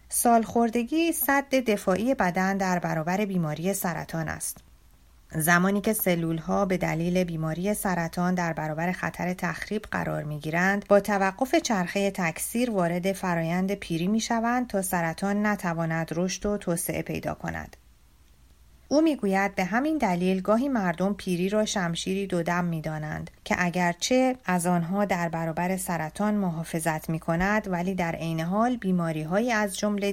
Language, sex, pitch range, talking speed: Persian, female, 165-205 Hz, 140 wpm